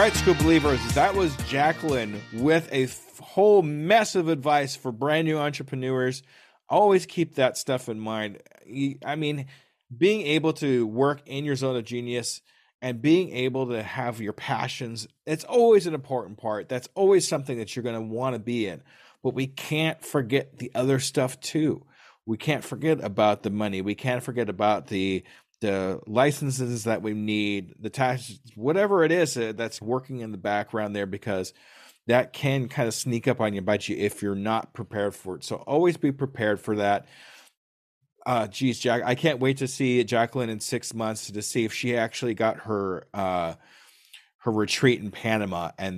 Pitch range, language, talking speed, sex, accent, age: 110-145 Hz, English, 180 wpm, male, American, 40-59